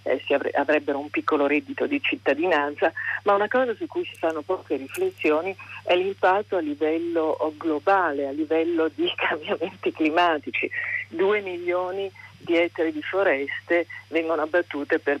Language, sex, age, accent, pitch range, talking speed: Italian, female, 50-69, native, 145-175 Hz, 145 wpm